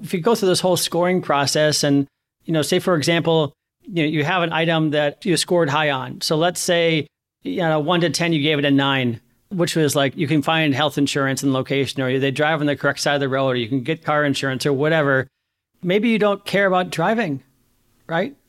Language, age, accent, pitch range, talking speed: English, 40-59, American, 140-170 Hz, 240 wpm